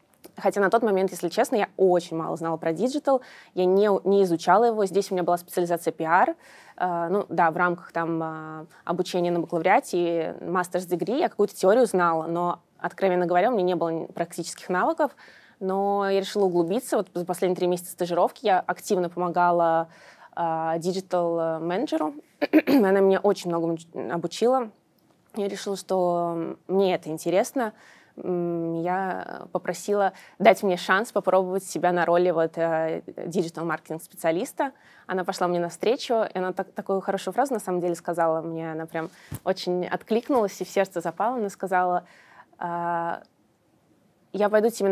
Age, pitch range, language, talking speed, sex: 20-39, 170-195 Hz, Russian, 145 wpm, female